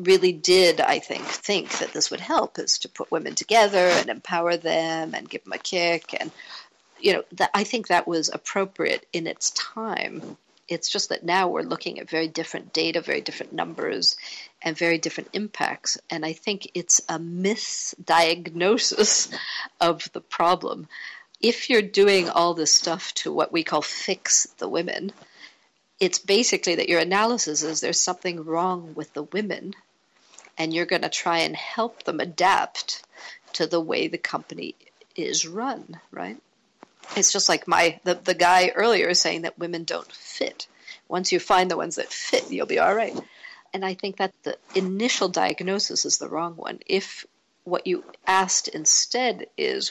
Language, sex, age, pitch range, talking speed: English, female, 50-69, 170-205 Hz, 170 wpm